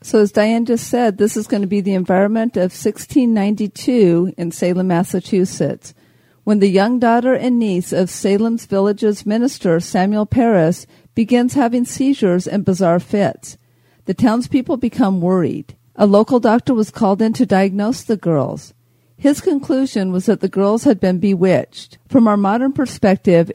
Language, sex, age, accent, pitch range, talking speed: English, female, 50-69, American, 175-225 Hz, 160 wpm